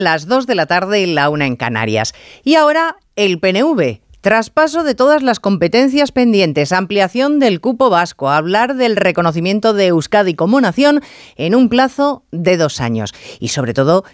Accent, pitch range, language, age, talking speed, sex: Spanish, 150-230 Hz, Spanish, 40-59, 175 wpm, female